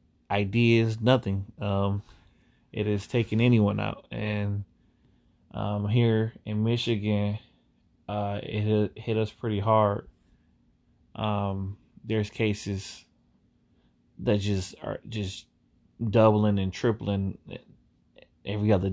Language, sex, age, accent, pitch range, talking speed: English, male, 20-39, American, 95-110 Hz, 100 wpm